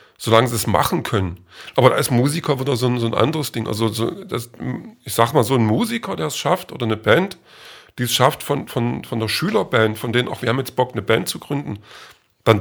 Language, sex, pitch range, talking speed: German, male, 115-150 Hz, 240 wpm